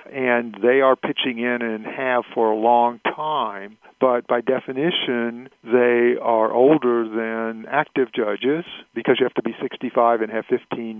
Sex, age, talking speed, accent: male, 50-69, 160 wpm, American